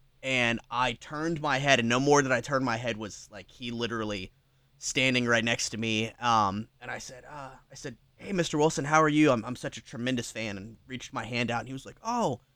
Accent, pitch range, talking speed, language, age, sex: American, 115-150 Hz, 245 wpm, English, 20-39, male